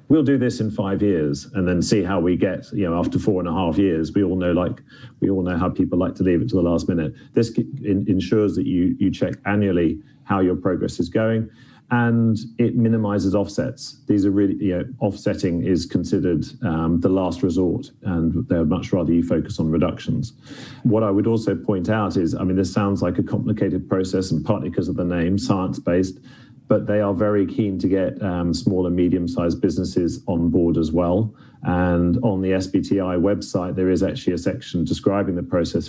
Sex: male